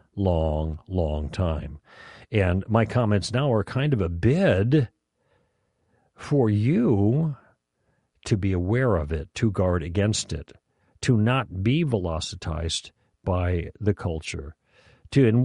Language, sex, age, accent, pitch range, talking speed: English, male, 60-79, American, 85-115 Hz, 125 wpm